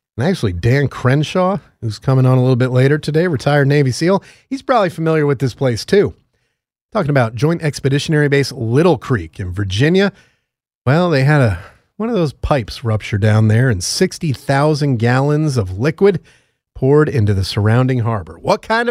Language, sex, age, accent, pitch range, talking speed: English, male, 40-59, American, 115-145 Hz, 170 wpm